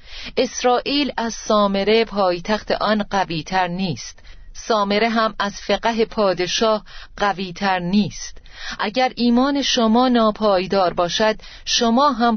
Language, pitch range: Persian, 180-235 Hz